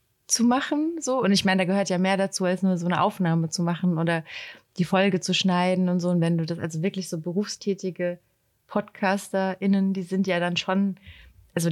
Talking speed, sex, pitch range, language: 205 wpm, female, 175-200 Hz, German